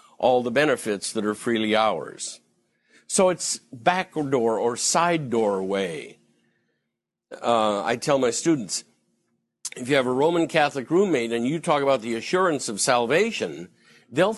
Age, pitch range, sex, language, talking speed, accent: 50-69, 125-180 Hz, male, English, 150 wpm, American